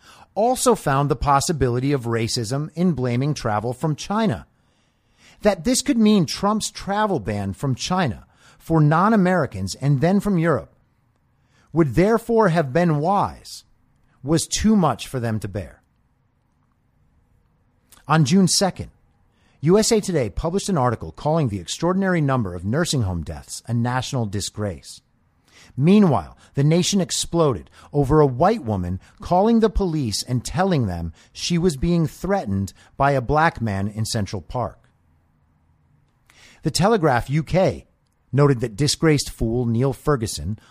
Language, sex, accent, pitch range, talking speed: English, male, American, 115-175 Hz, 135 wpm